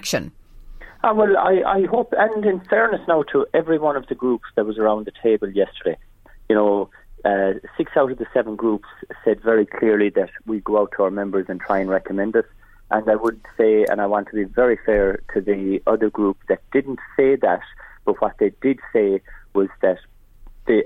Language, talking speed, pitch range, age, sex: English, 205 wpm, 100-120 Hz, 30-49, male